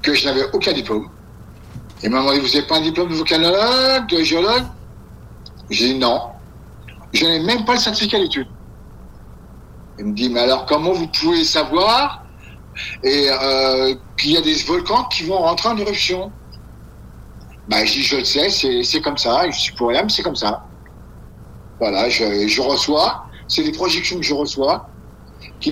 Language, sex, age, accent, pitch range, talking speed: French, male, 60-79, French, 120-180 Hz, 180 wpm